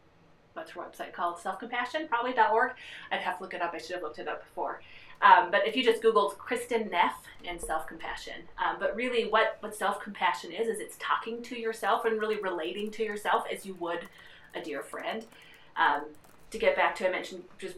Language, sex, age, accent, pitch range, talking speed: English, female, 30-49, American, 170-225 Hz, 205 wpm